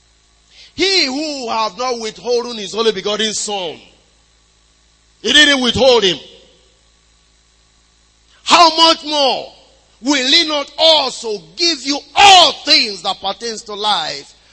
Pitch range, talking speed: 185-265 Hz, 115 wpm